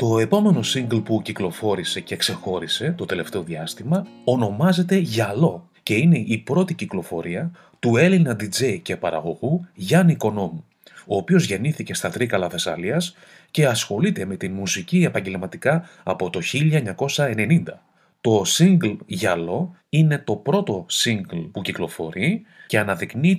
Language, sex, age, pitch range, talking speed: Greek, male, 30-49, 110-175 Hz, 130 wpm